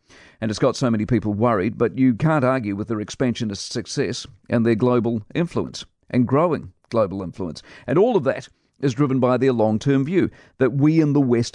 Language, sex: English, male